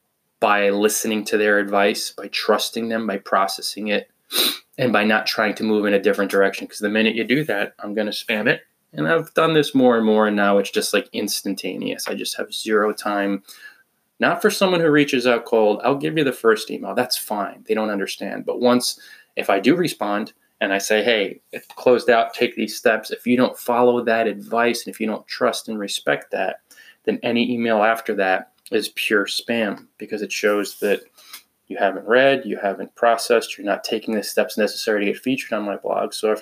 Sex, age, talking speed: male, 20-39, 215 wpm